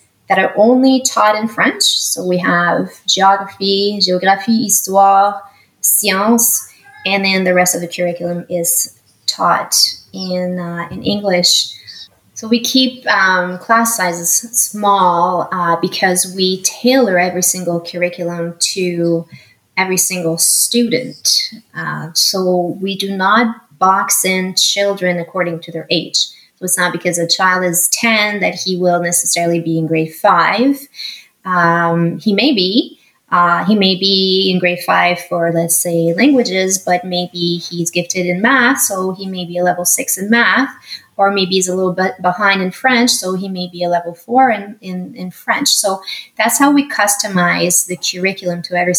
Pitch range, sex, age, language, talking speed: 175-205 Hz, female, 20-39, English, 160 wpm